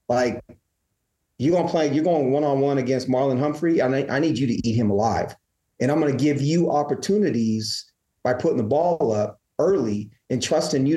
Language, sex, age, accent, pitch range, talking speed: English, male, 30-49, American, 115-145 Hz, 195 wpm